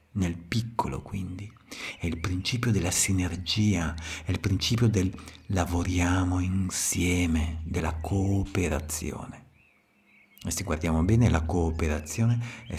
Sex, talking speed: male, 110 wpm